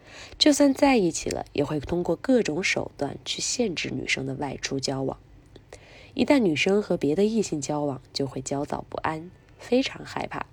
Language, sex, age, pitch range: Chinese, female, 20-39, 140-200 Hz